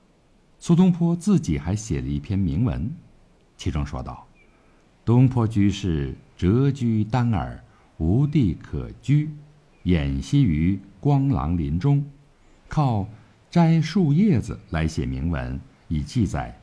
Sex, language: male, Chinese